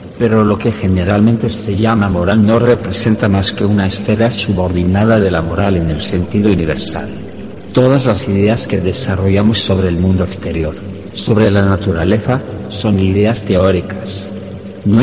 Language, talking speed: Spanish, 150 wpm